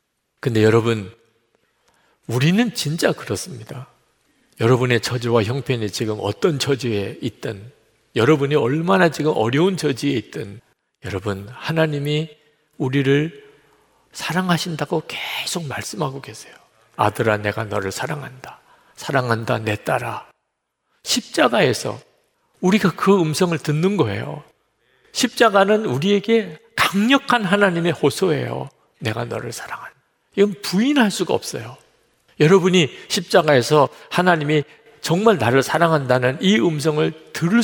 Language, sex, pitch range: Korean, male, 115-175 Hz